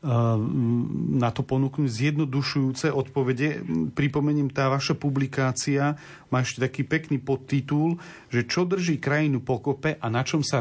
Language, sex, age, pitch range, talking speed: Slovak, male, 40-59, 125-145 Hz, 130 wpm